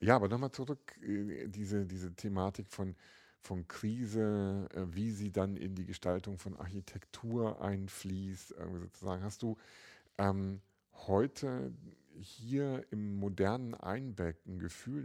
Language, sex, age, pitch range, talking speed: German, male, 50-69, 90-105 Hz, 115 wpm